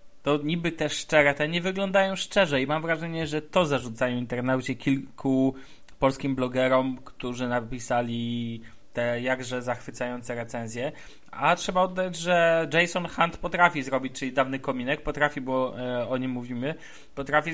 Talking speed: 140 wpm